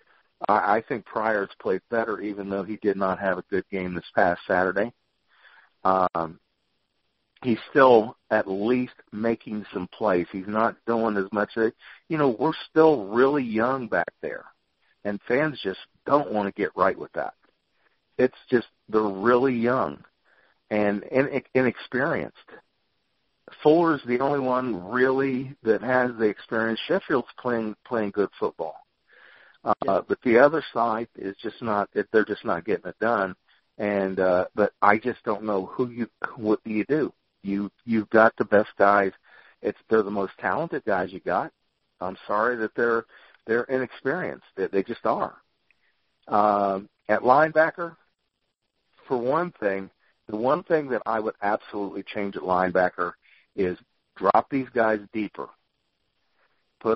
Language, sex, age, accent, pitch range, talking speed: English, male, 50-69, American, 100-125 Hz, 150 wpm